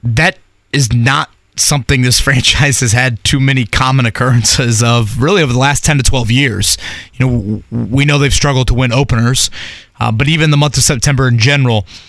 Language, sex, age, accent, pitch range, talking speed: English, male, 20-39, American, 120-145 Hz, 195 wpm